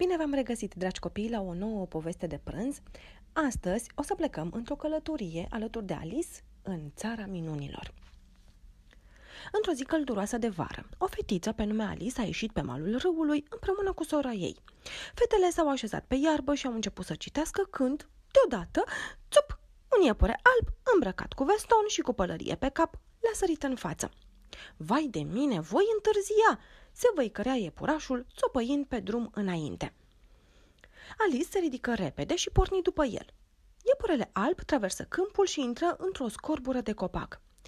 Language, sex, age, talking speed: Romanian, female, 30-49, 160 wpm